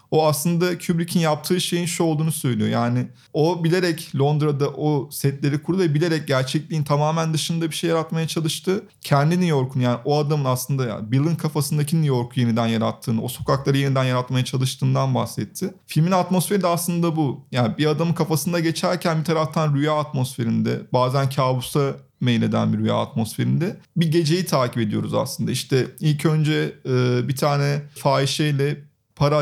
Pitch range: 135-165 Hz